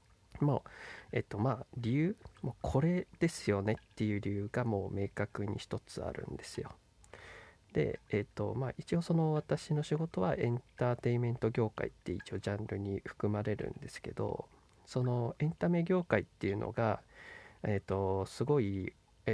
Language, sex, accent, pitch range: Japanese, male, native, 105-150 Hz